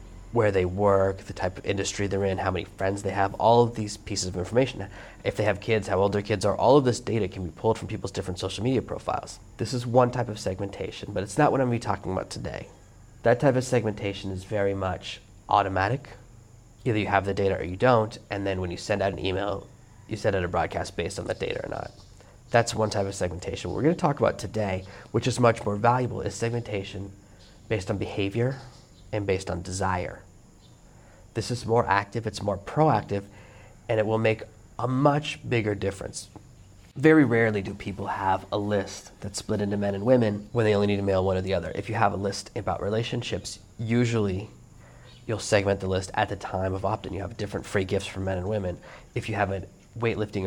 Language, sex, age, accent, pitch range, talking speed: English, male, 30-49, American, 95-115 Hz, 220 wpm